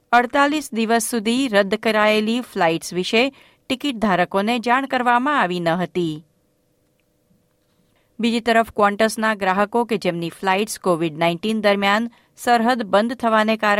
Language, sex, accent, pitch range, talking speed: Gujarati, female, native, 180-245 Hz, 95 wpm